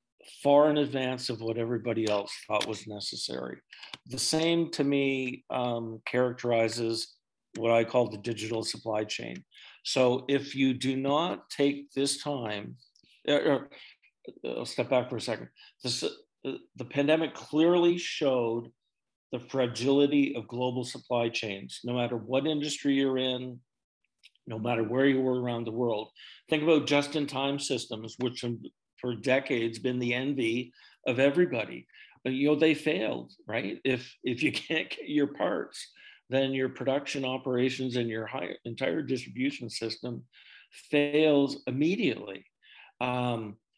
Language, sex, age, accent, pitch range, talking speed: English, male, 50-69, American, 115-140 Hz, 145 wpm